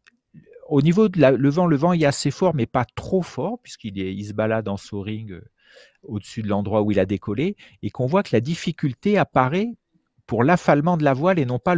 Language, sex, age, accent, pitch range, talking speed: French, male, 40-59, French, 105-145 Hz, 230 wpm